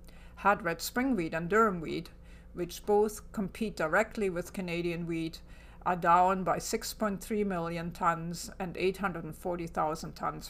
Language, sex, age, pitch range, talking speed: English, female, 50-69, 165-210 Hz, 130 wpm